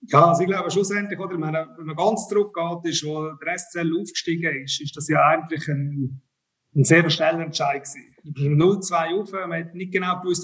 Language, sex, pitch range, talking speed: German, male, 155-180 Hz, 190 wpm